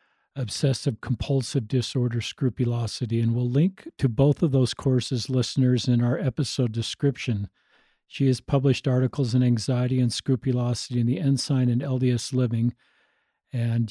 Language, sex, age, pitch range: English, male, 50-69, 120-135 Hz